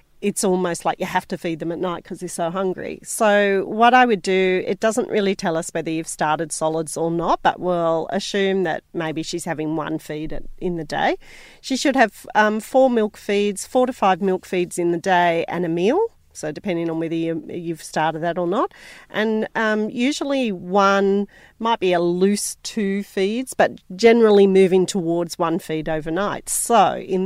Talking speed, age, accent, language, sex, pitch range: 195 wpm, 40-59, Australian, English, female, 170-210 Hz